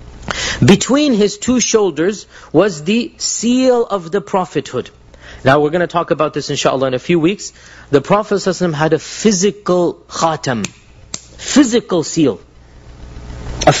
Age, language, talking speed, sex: 40-59, English, 135 wpm, male